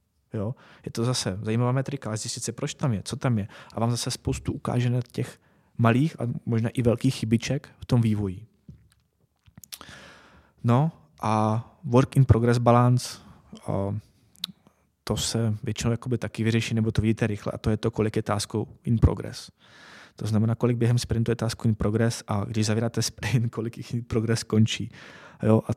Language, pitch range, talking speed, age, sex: Czech, 105-115 Hz, 165 wpm, 20-39, male